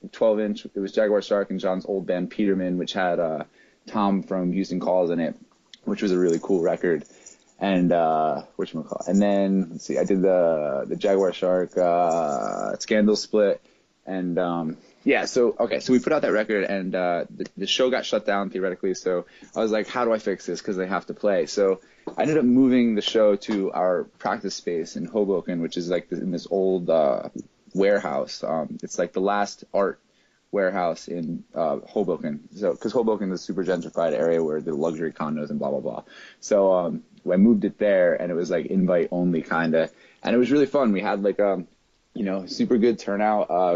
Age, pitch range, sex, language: 20-39, 90-105 Hz, male, English